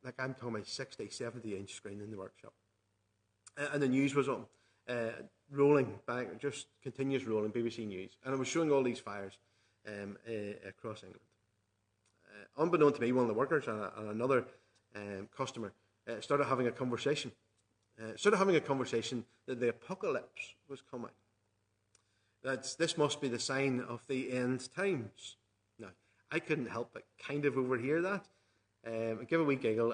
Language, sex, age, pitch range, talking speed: English, male, 30-49, 105-135 Hz, 175 wpm